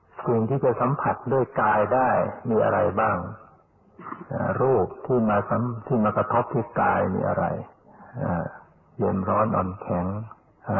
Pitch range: 100-115 Hz